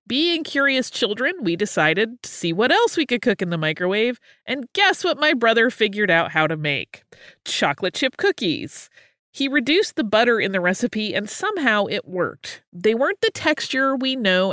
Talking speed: 185 wpm